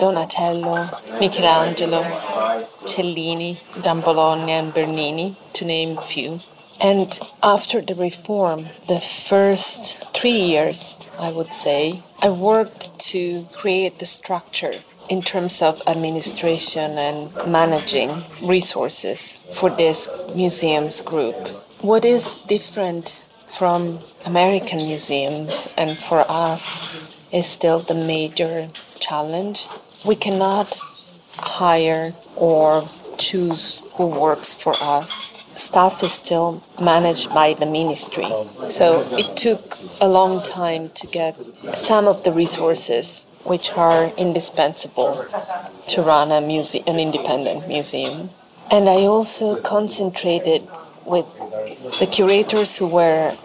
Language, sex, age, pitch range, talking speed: Italian, female, 30-49, 160-190 Hz, 110 wpm